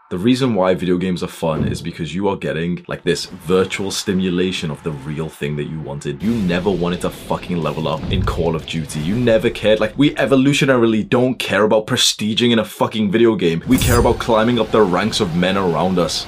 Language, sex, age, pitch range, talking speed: English, male, 20-39, 90-120 Hz, 220 wpm